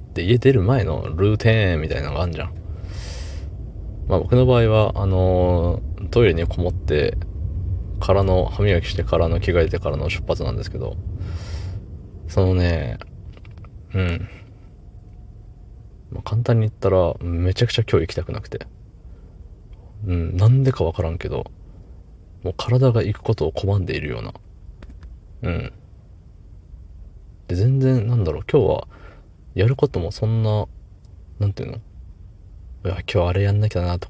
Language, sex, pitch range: Japanese, male, 90-105 Hz